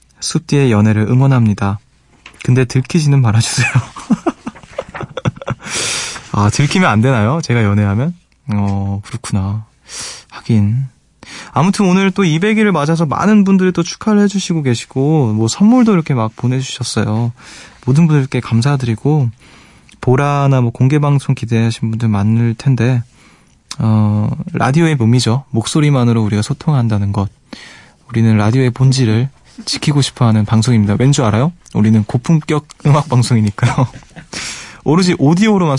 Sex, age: male, 20-39